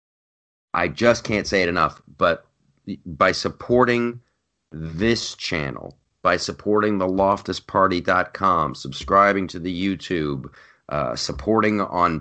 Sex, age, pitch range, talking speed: male, 40-59, 85-115 Hz, 115 wpm